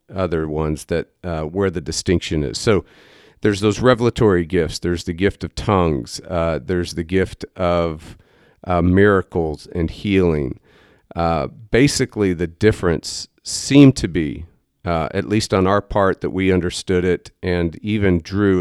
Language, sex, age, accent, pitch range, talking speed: English, male, 40-59, American, 85-95 Hz, 150 wpm